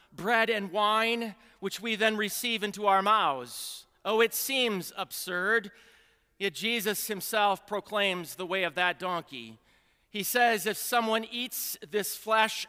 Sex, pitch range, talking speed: male, 190-225 Hz, 140 wpm